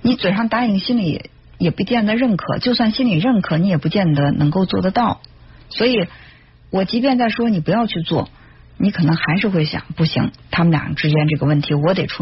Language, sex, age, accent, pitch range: Chinese, female, 50-69, native, 155-220 Hz